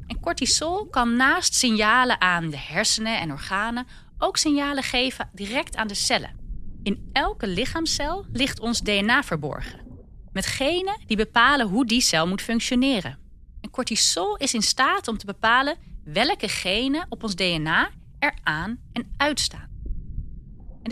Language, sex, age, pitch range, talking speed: Dutch, female, 30-49, 185-265 Hz, 145 wpm